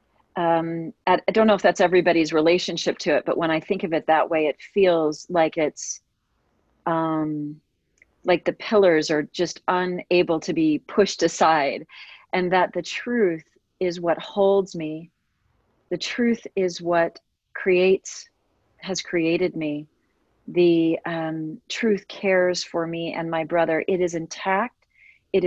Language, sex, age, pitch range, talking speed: English, female, 40-59, 165-195 Hz, 145 wpm